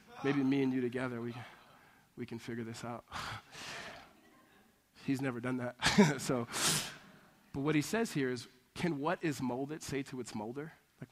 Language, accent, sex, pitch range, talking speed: English, American, male, 135-180 Hz, 165 wpm